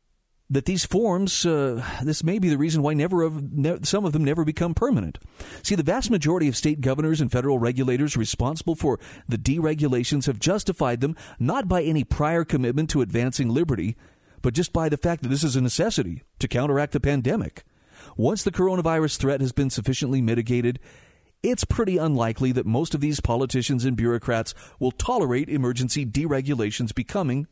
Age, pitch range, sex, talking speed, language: 40-59, 125-160 Hz, male, 175 wpm, English